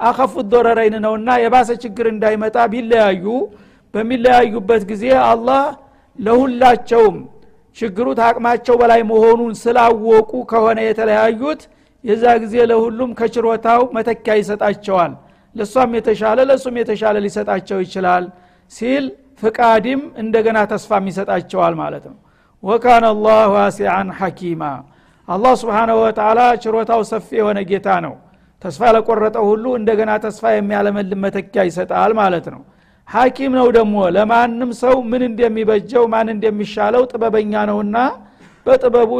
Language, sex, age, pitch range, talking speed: Amharic, male, 60-79, 205-235 Hz, 90 wpm